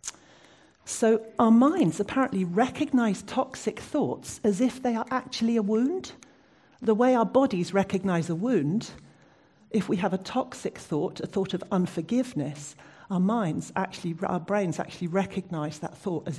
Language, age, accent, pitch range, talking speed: English, 50-69, British, 160-210 Hz, 150 wpm